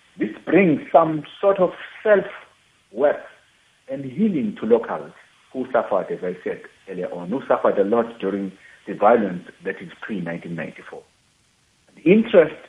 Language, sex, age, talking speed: English, male, 60-79, 135 wpm